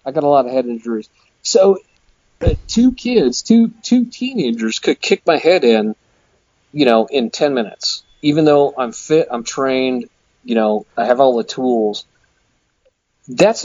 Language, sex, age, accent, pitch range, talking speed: English, male, 40-59, American, 110-150 Hz, 165 wpm